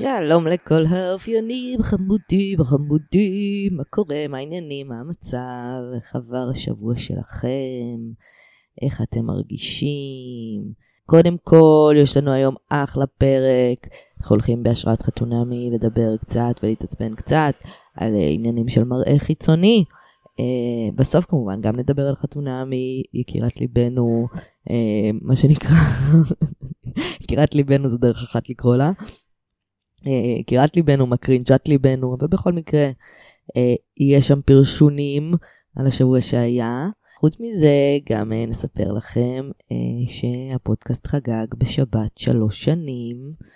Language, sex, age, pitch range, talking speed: Hebrew, female, 20-39, 120-150 Hz, 110 wpm